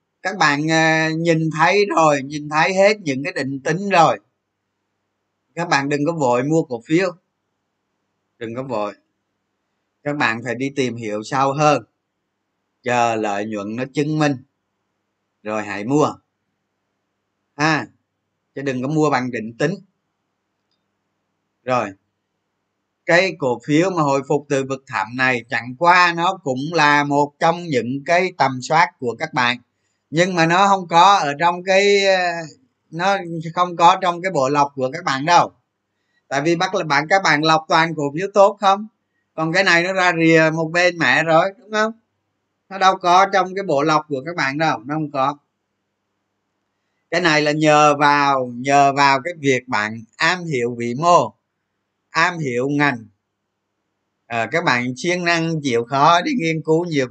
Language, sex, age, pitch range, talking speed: Vietnamese, male, 20-39, 110-165 Hz, 170 wpm